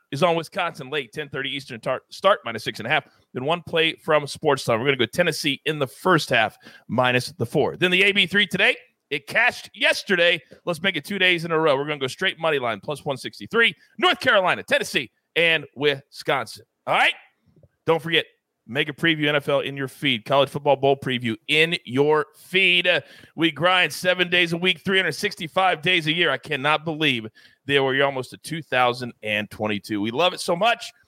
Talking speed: 195 wpm